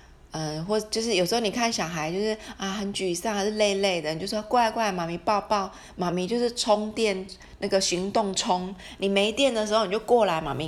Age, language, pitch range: 30-49, Chinese, 165-210 Hz